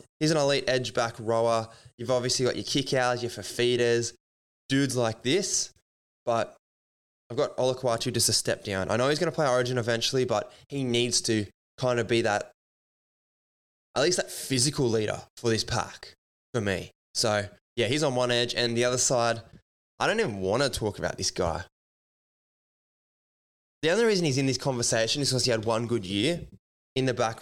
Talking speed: 190 wpm